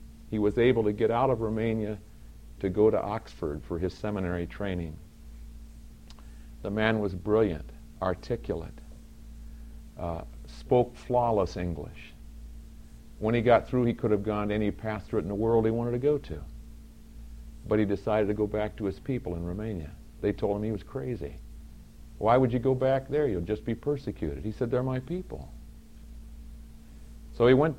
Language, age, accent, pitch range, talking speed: English, 50-69, American, 75-115 Hz, 170 wpm